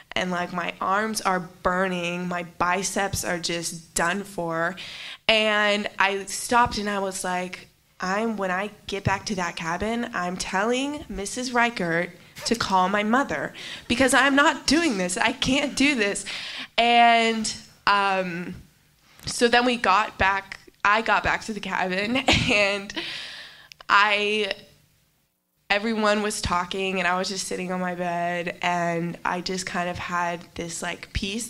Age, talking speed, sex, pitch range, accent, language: 20-39, 150 wpm, female, 175-215 Hz, American, English